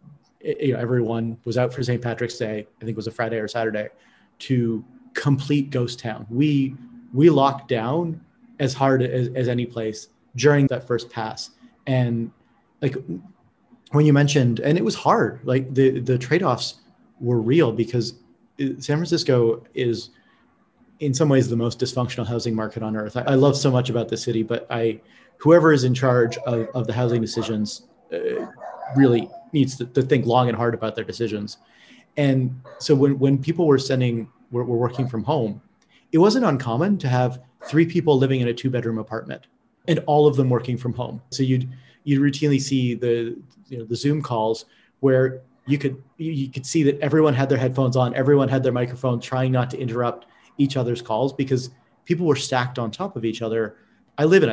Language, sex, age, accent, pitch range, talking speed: English, male, 30-49, American, 120-145 Hz, 190 wpm